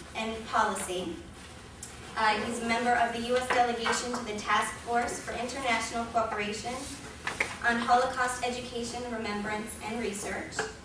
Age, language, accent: 20-39, English, American